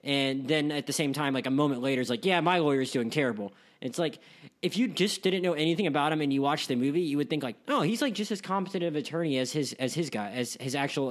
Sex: male